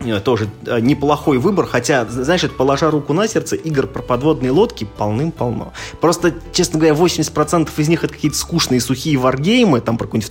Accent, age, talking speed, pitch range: native, 20-39, 165 wpm, 110-145 Hz